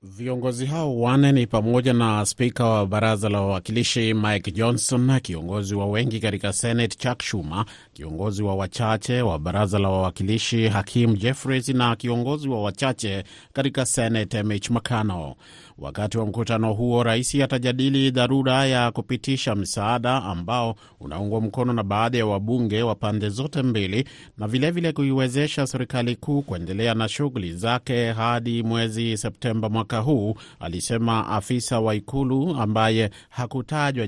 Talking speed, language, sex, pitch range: 140 wpm, Swahili, male, 105-125 Hz